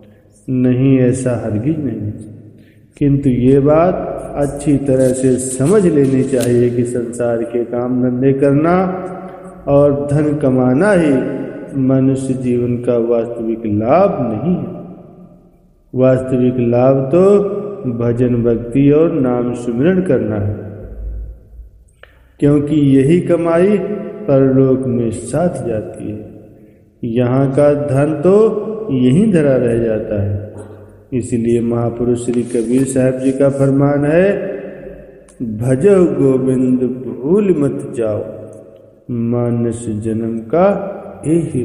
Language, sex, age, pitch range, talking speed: Hindi, male, 50-69, 115-150 Hz, 110 wpm